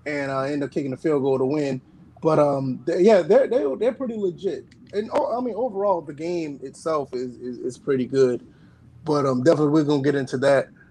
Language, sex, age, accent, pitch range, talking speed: English, male, 20-39, American, 140-170 Hz, 225 wpm